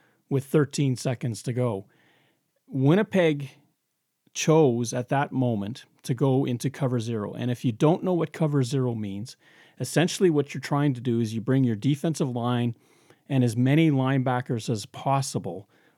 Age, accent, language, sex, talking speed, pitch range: 40-59, American, English, male, 160 wpm, 120-145 Hz